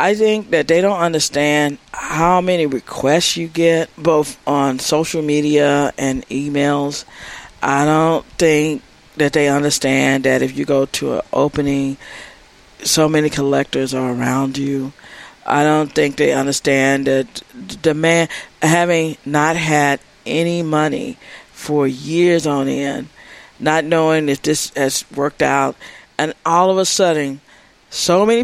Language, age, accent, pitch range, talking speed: English, 50-69, American, 145-195 Hz, 140 wpm